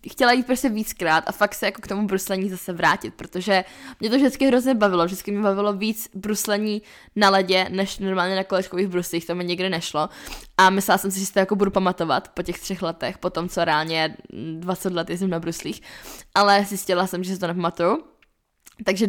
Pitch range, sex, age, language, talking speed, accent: 175-200 Hz, female, 10-29, Czech, 210 wpm, native